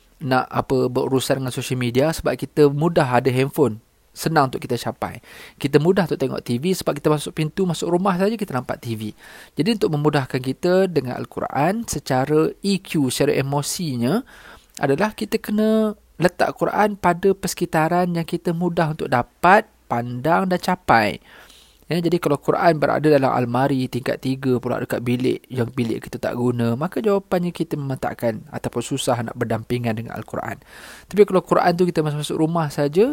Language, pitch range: English, 130-180 Hz